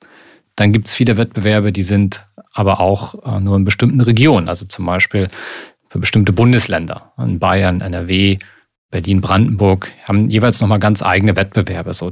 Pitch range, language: 95-115 Hz, German